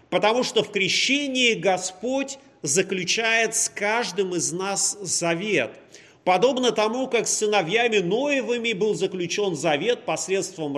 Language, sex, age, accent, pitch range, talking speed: Russian, male, 30-49, native, 170-220 Hz, 115 wpm